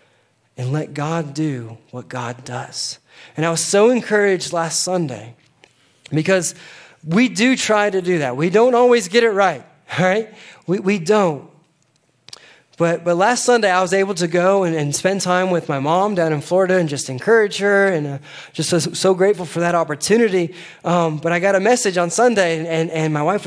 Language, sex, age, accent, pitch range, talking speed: English, male, 20-39, American, 150-195 Hz, 195 wpm